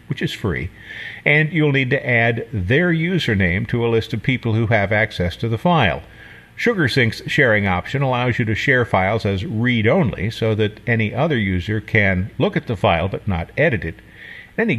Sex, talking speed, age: male, 185 wpm, 50-69